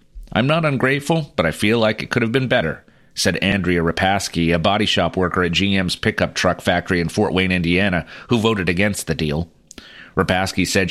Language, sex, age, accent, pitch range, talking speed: English, male, 40-59, American, 90-115 Hz, 195 wpm